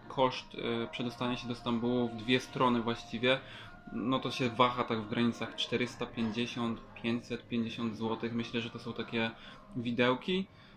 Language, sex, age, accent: Polish, male, 20-39, native